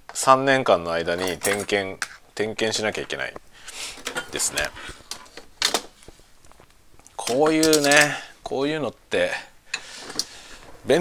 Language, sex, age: Japanese, male, 40-59